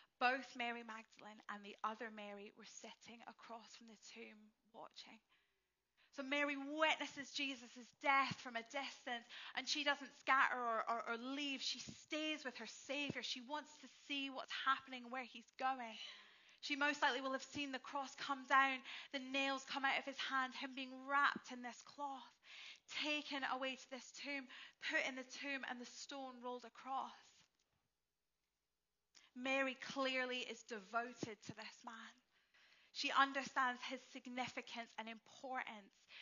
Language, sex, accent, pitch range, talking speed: English, female, British, 225-270 Hz, 155 wpm